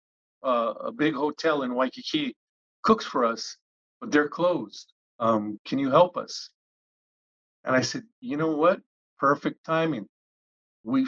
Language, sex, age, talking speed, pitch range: English, male, 50-69, 140 wpm, 125-165 Hz